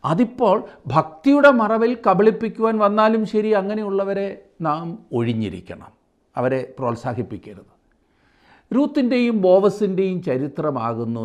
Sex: male